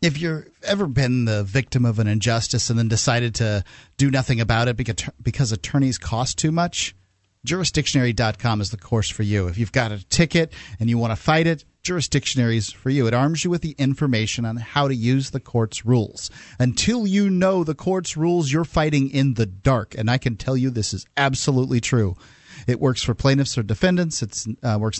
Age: 40-59